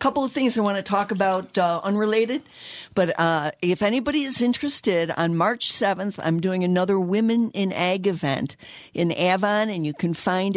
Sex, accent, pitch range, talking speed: female, American, 160-195 Hz, 180 wpm